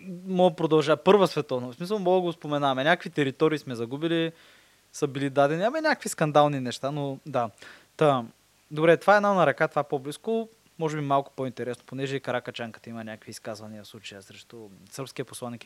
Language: Bulgarian